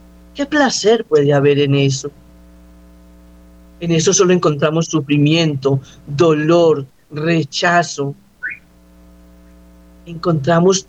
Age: 50-69